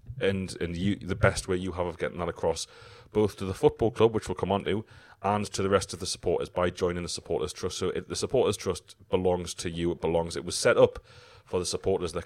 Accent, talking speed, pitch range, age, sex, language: British, 255 wpm, 85-105 Hz, 30-49, male, English